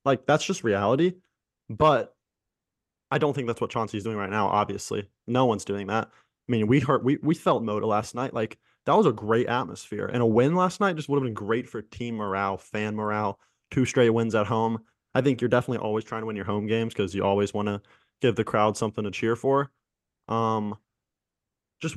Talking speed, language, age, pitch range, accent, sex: 220 wpm, English, 20-39, 105-125 Hz, American, male